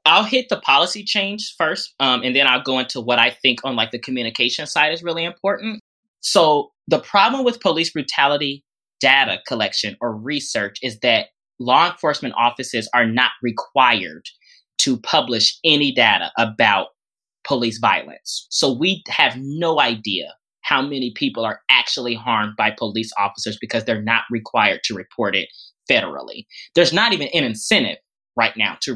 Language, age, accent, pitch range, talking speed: English, 20-39, American, 120-190 Hz, 160 wpm